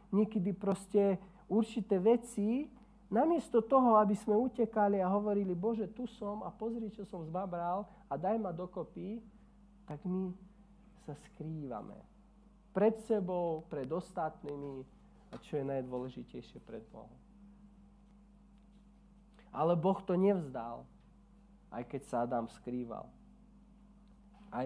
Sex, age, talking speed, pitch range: male, 40-59, 115 wpm, 175-210 Hz